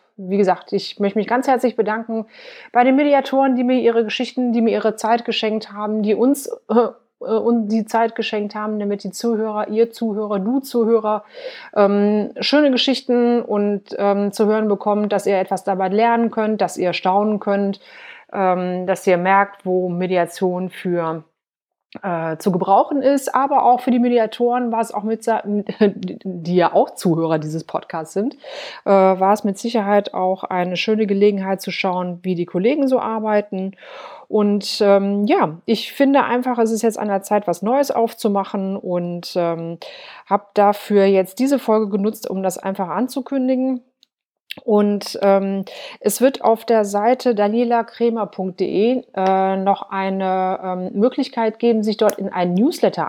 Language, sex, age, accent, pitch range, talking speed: German, female, 30-49, German, 190-235 Hz, 160 wpm